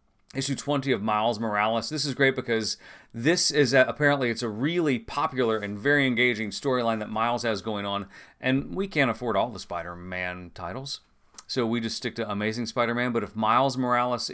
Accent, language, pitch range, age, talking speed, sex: American, English, 105-130 Hz, 30-49, 185 wpm, male